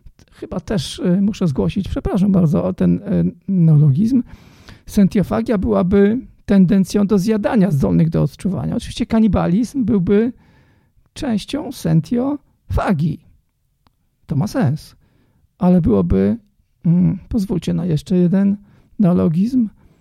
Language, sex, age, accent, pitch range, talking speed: Polish, male, 50-69, native, 165-210 Hz, 100 wpm